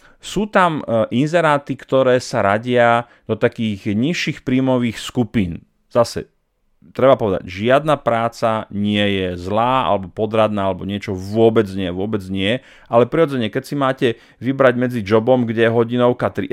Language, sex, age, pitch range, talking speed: Slovak, male, 30-49, 100-120 Hz, 140 wpm